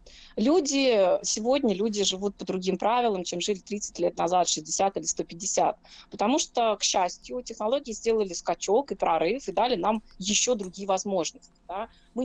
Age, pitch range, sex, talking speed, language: 20-39, 185-245 Hz, female, 155 wpm, Russian